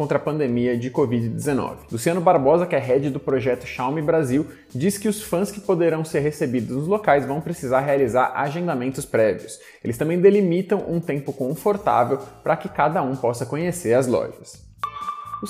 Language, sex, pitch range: Portuguese, male, 135-185 Hz